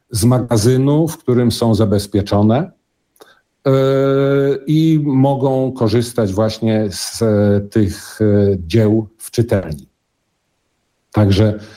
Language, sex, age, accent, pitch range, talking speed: Polish, male, 50-69, native, 105-125 Hz, 80 wpm